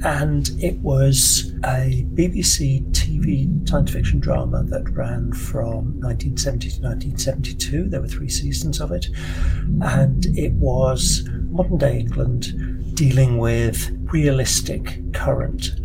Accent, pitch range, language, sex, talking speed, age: British, 85-135 Hz, English, male, 115 wpm, 60-79